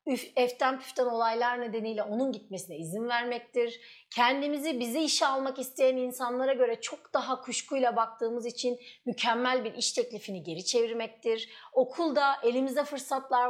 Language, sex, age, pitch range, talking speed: Turkish, female, 30-49, 215-265 Hz, 130 wpm